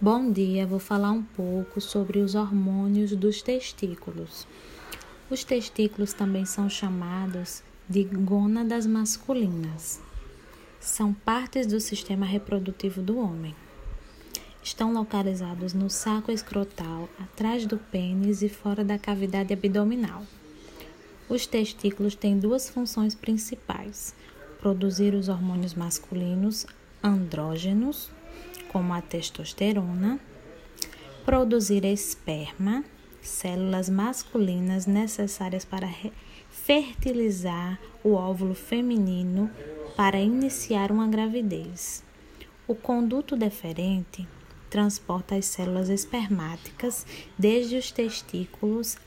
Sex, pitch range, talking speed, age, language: female, 185-220 Hz, 95 wpm, 20-39, Portuguese